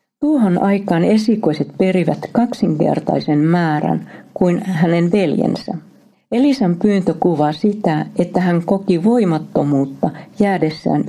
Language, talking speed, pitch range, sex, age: Finnish, 95 wpm, 160-205 Hz, female, 50-69